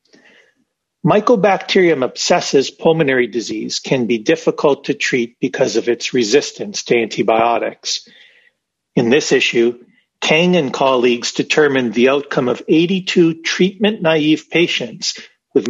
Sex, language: male, English